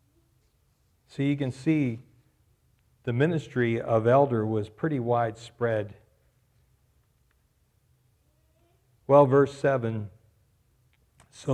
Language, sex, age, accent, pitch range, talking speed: English, male, 50-69, American, 115-130 Hz, 80 wpm